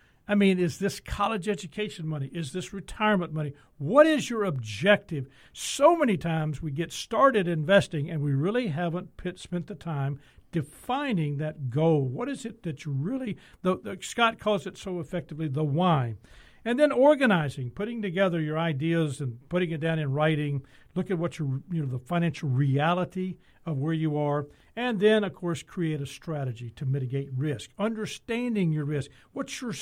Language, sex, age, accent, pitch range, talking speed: English, male, 60-79, American, 145-195 Hz, 175 wpm